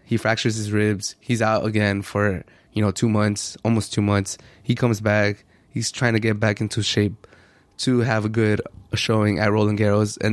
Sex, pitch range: male, 105-110 Hz